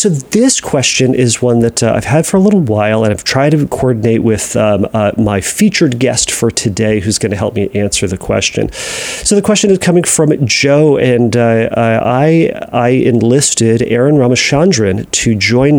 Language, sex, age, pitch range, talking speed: English, male, 40-59, 105-145 Hz, 190 wpm